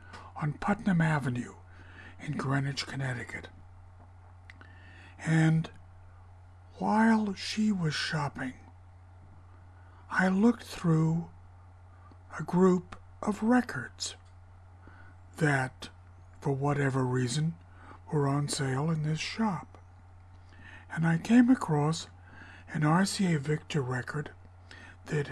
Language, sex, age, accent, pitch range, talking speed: English, male, 60-79, American, 90-150 Hz, 90 wpm